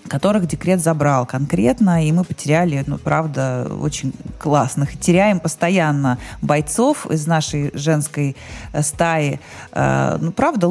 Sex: female